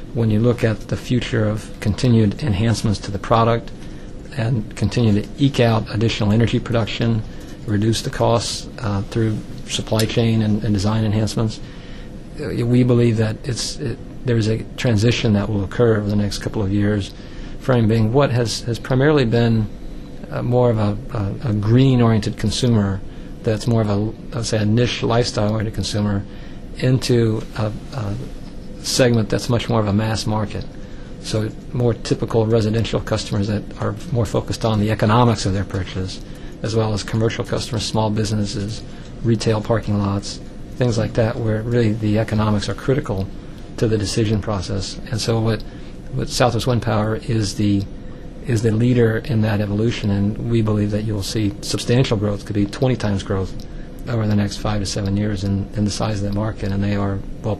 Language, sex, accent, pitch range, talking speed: English, male, American, 105-115 Hz, 180 wpm